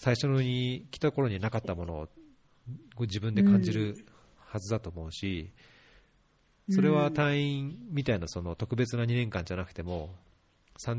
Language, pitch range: Japanese, 95-135 Hz